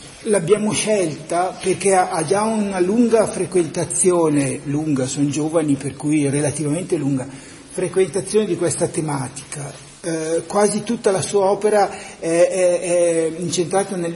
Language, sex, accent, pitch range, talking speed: Italian, male, native, 155-200 Hz, 120 wpm